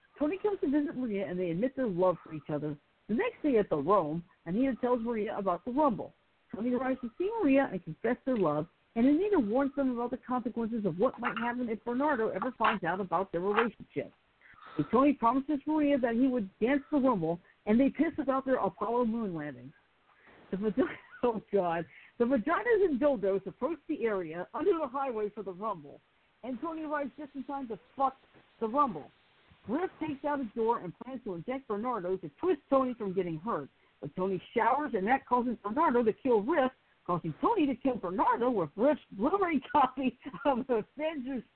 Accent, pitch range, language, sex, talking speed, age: American, 195-275 Hz, English, female, 195 wpm, 50-69